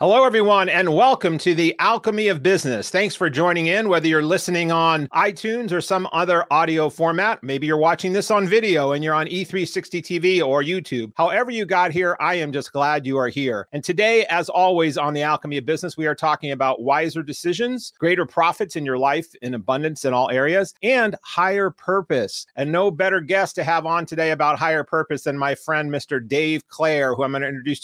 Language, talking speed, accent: English, 205 wpm, American